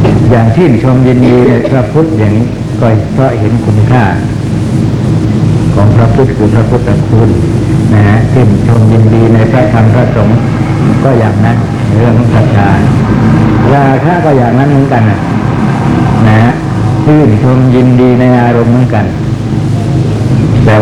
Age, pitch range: 60-79, 110-125 Hz